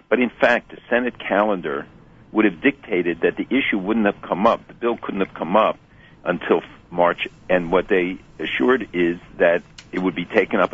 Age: 60-79